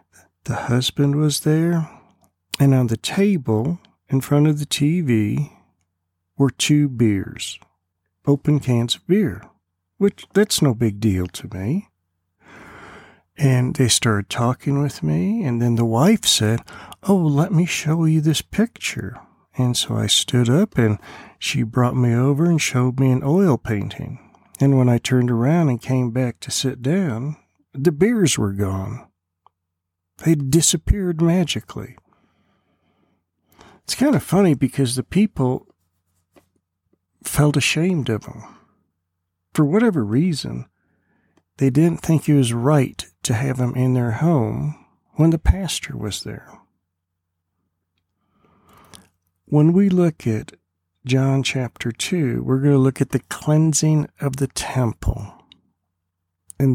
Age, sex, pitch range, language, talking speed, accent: 50-69, male, 105-150 Hz, English, 135 wpm, American